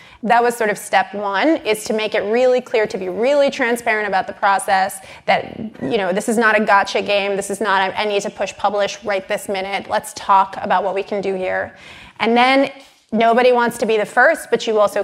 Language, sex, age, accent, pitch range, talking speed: English, female, 30-49, American, 200-235 Hz, 230 wpm